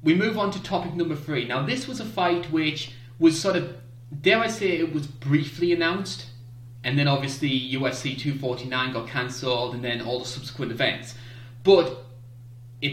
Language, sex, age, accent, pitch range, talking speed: English, male, 20-39, British, 120-150 Hz, 175 wpm